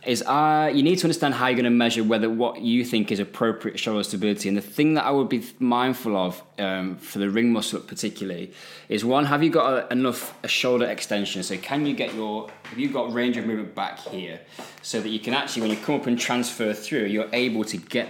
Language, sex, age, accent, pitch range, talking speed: English, male, 20-39, British, 105-125 Hz, 235 wpm